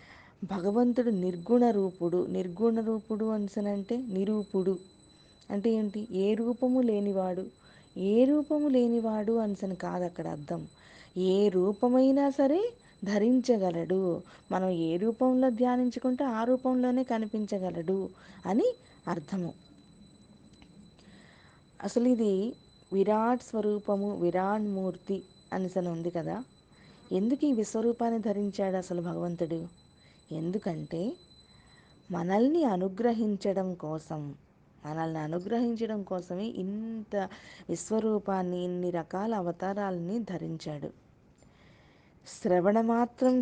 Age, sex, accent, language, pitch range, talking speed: 20-39, female, native, Telugu, 180-230 Hz, 85 wpm